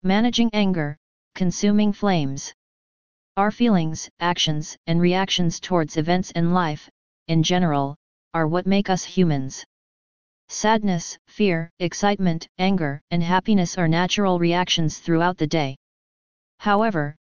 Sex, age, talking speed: female, 30-49, 115 wpm